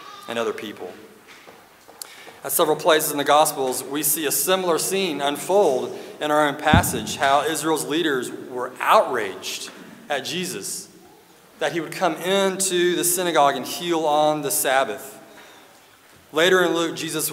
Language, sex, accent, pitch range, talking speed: English, male, American, 140-185 Hz, 140 wpm